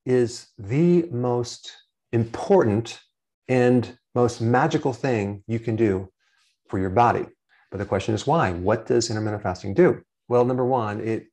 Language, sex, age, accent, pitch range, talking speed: English, male, 40-59, American, 110-135 Hz, 150 wpm